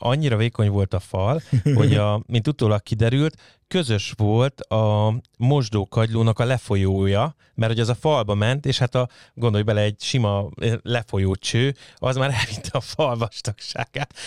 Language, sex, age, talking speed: Hungarian, male, 30-49, 150 wpm